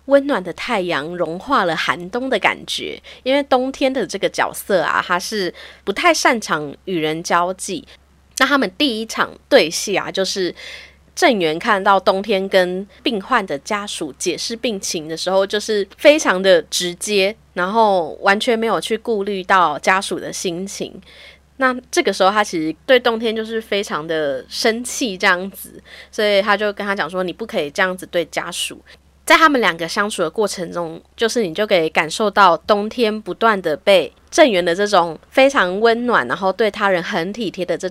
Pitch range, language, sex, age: 180-235 Hz, Chinese, female, 20-39